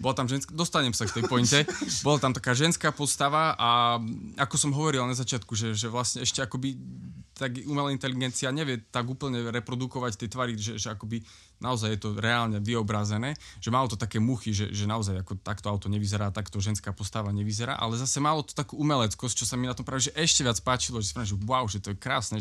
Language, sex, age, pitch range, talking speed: Slovak, male, 20-39, 100-125 Hz, 215 wpm